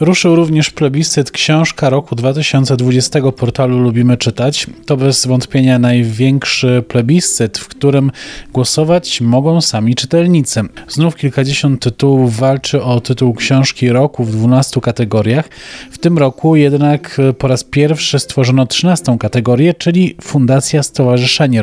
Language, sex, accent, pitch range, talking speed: Polish, male, native, 125-150 Hz, 120 wpm